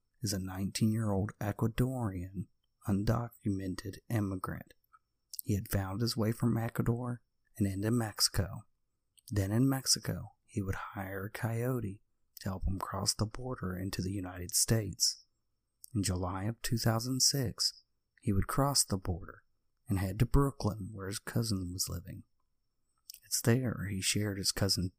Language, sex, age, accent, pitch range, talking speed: English, male, 30-49, American, 95-120 Hz, 140 wpm